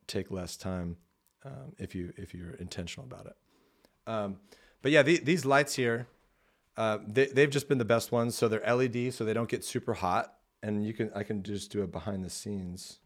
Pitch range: 95-115 Hz